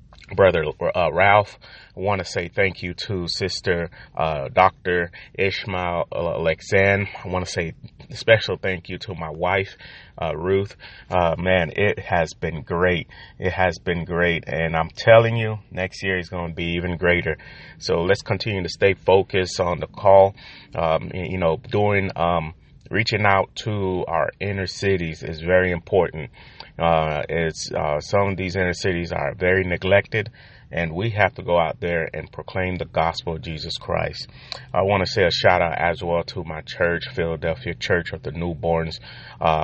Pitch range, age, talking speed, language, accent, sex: 85-95 Hz, 30-49, 175 wpm, English, American, male